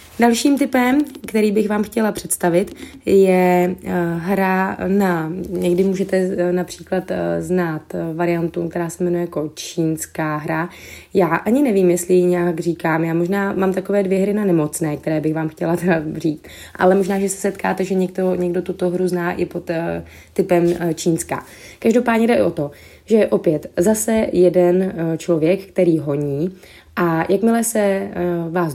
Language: Czech